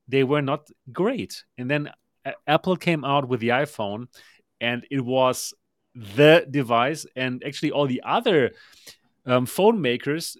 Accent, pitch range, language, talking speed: German, 125-155 Hz, English, 150 wpm